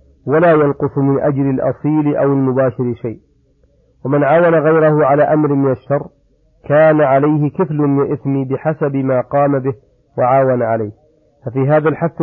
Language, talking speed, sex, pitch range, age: Arabic, 140 wpm, male, 130-150 Hz, 40-59